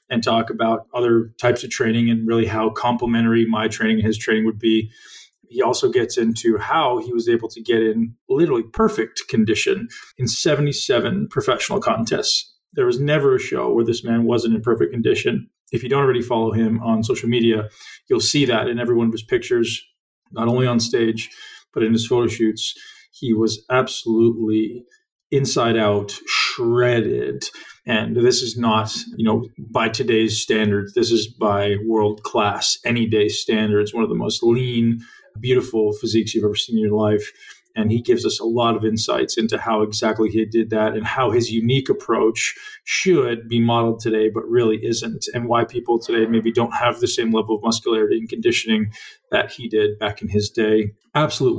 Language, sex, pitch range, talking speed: English, male, 110-120 Hz, 185 wpm